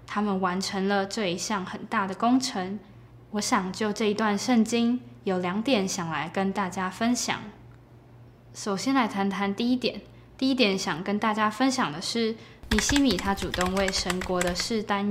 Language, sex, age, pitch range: Chinese, female, 10-29, 185-215 Hz